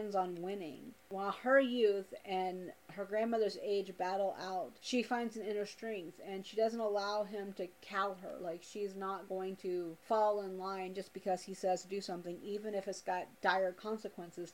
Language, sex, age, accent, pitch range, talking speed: English, female, 30-49, American, 190-225 Hz, 180 wpm